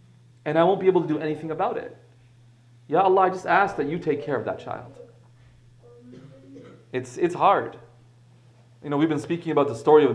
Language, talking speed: English, 200 wpm